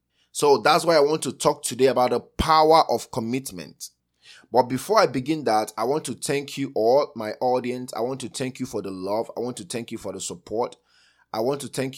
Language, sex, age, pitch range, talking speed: English, male, 20-39, 105-140 Hz, 230 wpm